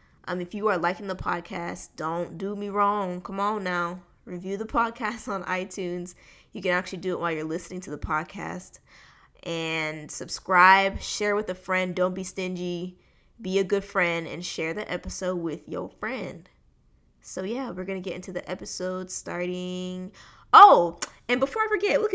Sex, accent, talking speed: female, American, 180 wpm